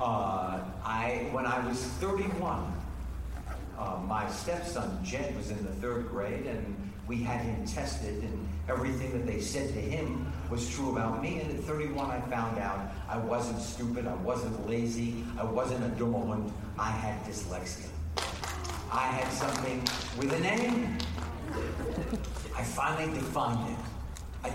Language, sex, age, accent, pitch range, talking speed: English, male, 50-69, American, 90-140 Hz, 145 wpm